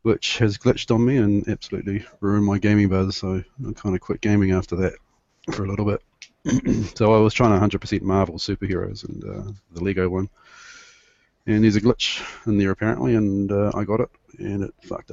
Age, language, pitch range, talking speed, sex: 30-49, English, 95-110 Hz, 200 wpm, male